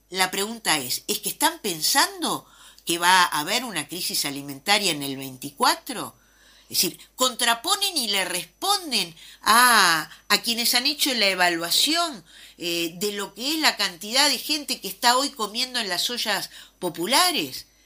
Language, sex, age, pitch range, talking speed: Spanish, female, 50-69, 185-285 Hz, 160 wpm